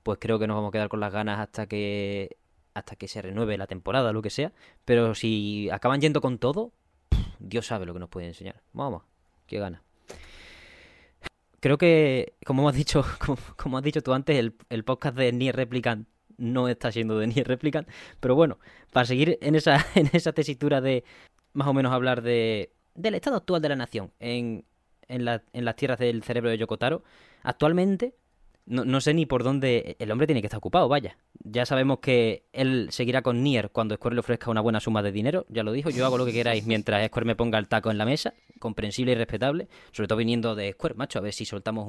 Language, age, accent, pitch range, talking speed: Spanish, 20-39, Spanish, 110-140 Hz, 215 wpm